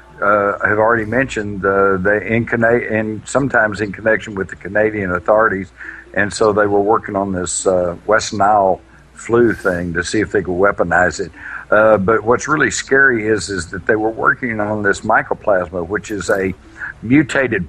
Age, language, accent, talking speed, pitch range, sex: 60-79, English, American, 185 wpm, 95-125 Hz, male